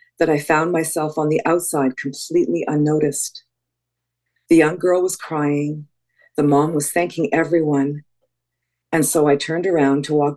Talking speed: 150 wpm